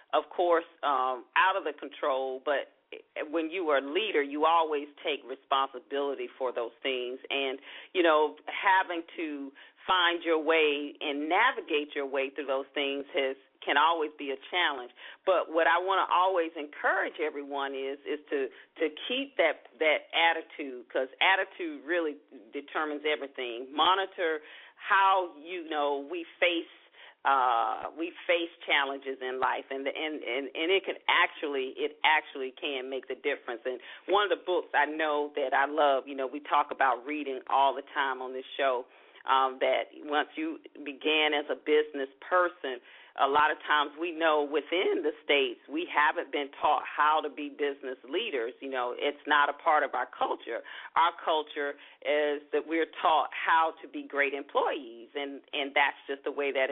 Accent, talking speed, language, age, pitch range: American, 175 wpm, English, 40-59, 140-180 Hz